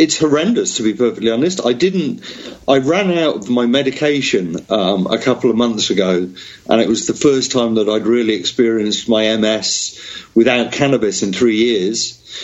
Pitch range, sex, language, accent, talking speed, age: 115-145 Hz, male, English, British, 180 wpm, 40-59